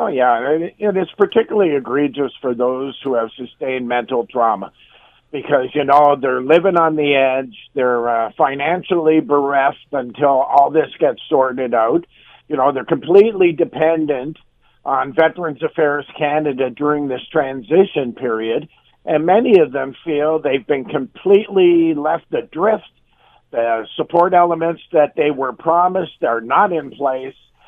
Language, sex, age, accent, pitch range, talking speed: English, male, 50-69, American, 135-165 Hz, 145 wpm